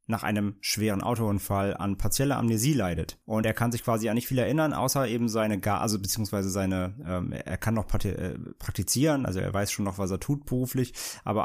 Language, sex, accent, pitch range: German, male, German, 100-120 Hz